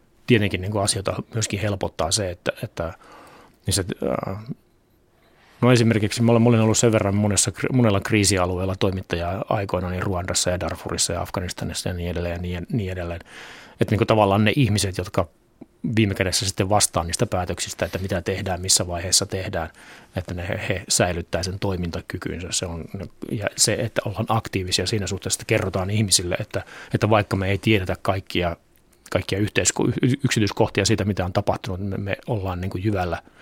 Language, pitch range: Finnish, 90-110 Hz